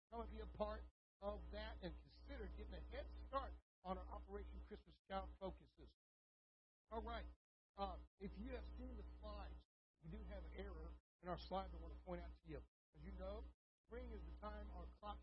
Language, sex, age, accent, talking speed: English, male, 60-79, American, 210 wpm